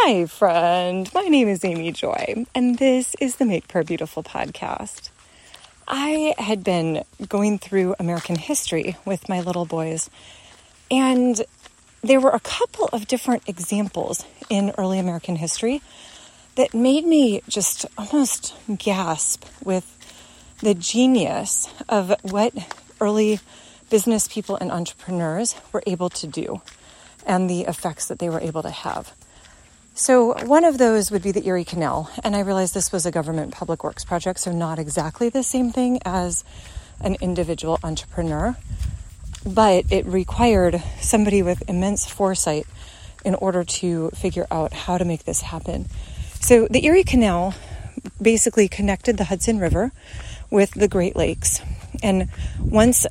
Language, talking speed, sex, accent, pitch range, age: English, 145 wpm, female, American, 175-230 Hz, 30-49